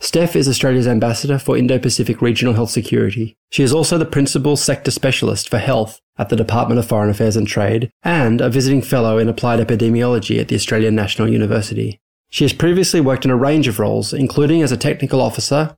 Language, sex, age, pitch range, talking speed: English, male, 20-39, 110-135 Hz, 200 wpm